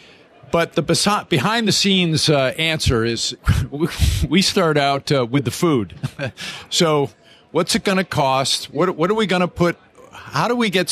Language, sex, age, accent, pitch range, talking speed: English, male, 50-69, American, 130-170 Hz, 180 wpm